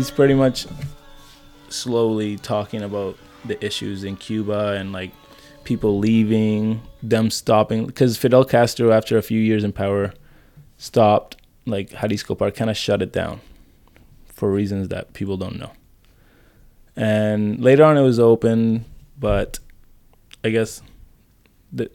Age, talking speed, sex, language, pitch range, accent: 20-39, 135 wpm, male, English, 100-115 Hz, American